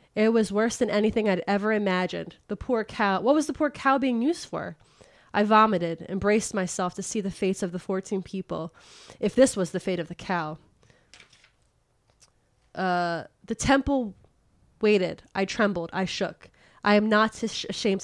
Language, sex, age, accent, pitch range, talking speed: English, female, 20-39, American, 180-220 Hz, 170 wpm